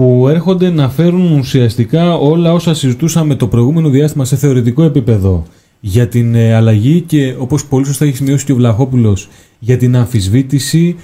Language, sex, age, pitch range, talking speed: Greek, male, 30-49, 115-150 Hz, 160 wpm